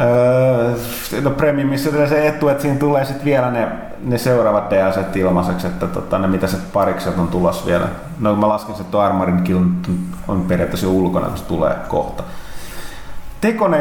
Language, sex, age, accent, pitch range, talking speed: Finnish, male, 30-49, native, 100-140 Hz, 160 wpm